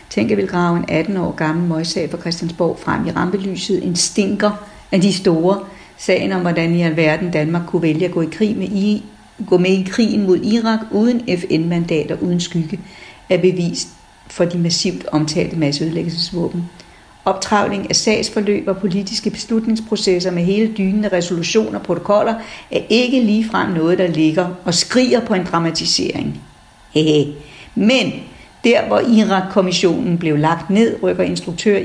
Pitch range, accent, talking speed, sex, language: 170-205 Hz, native, 155 wpm, female, Danish